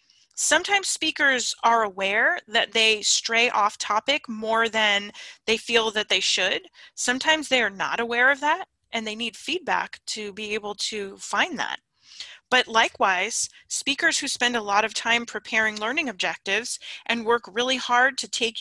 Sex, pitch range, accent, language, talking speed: female, 215-265 Hz, American, English, 165 wpm